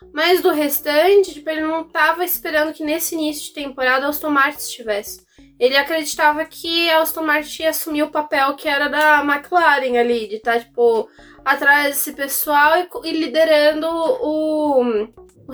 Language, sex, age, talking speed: Portuguese, female, 10-29, 170 wpm